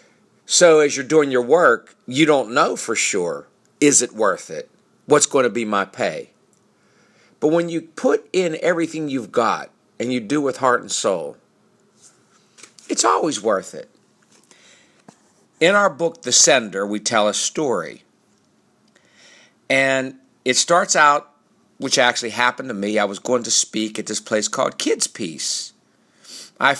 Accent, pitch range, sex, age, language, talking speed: American, 120-155 Hz, male, 50-69, English, 155 wpm